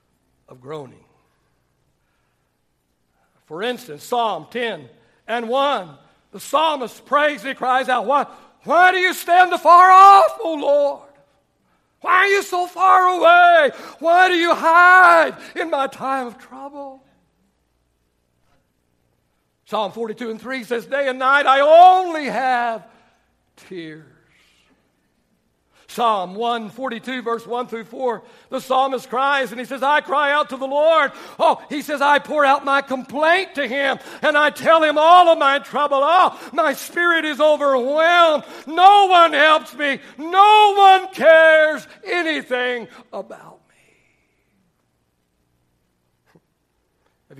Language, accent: English, American